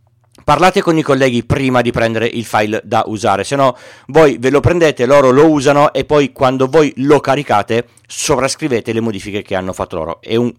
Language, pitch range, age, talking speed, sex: Italian, 110-135 Hz, 40-59, 200 wpm, male